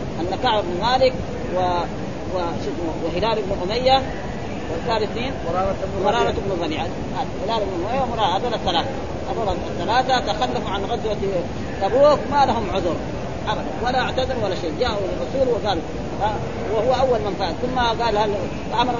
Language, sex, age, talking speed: Arabic, female, 30-49, 135 wpm